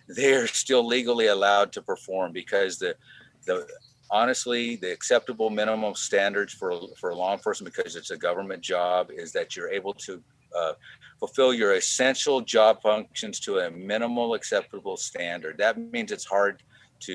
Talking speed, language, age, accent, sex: 155 wpm, English, 50-69, American, male